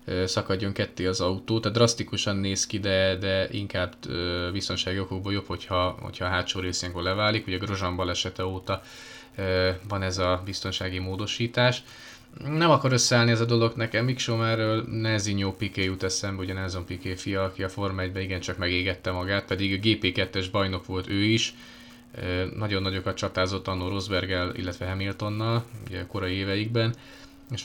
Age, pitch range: 20-39, 95-110 Hz